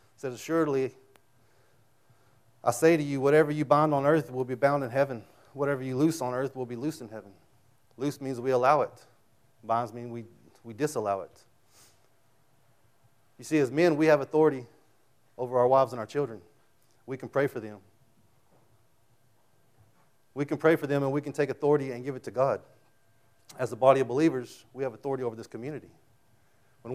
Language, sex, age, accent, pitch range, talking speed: English, male, 30-49, American, 115-145 Hz, 185 wpm